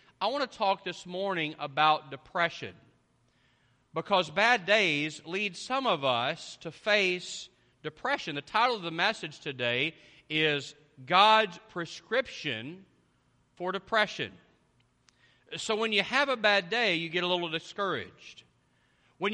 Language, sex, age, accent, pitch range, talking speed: English, male, 40-59, American, 155-205 Hz, 130 wpm